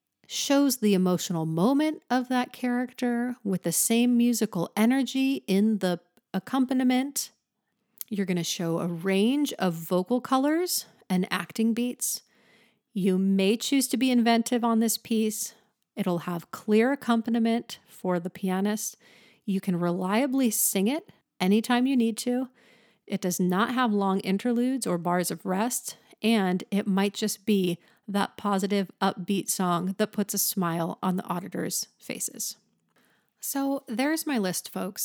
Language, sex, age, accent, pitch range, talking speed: English, female, 40-59, American, 190-245 Hz, 145 wpm